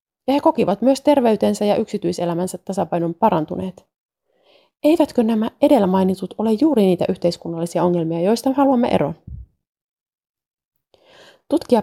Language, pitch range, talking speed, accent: Finnish, 175-235 Hz, 110 wpm, native